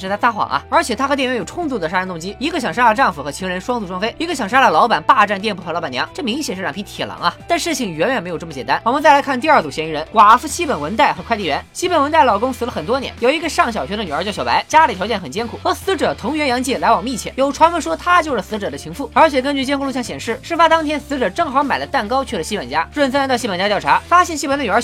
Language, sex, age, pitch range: Chinese, female, 20-39, 215-305 Hz